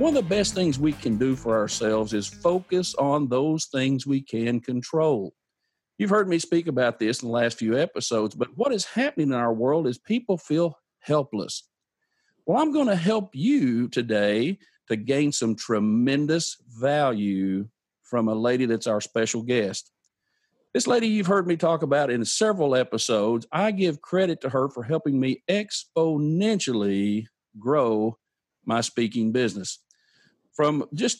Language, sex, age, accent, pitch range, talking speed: English, male, 50-69, American, 120-185 Hz, 160 wpm